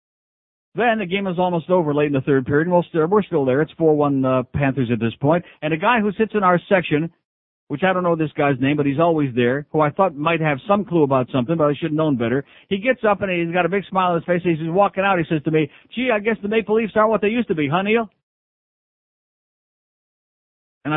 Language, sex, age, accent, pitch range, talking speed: English, male, 60-79, American, 140-190 Hz, 255 wpm